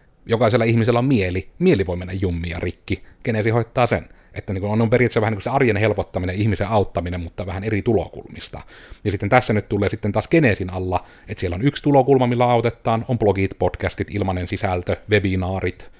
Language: Finnish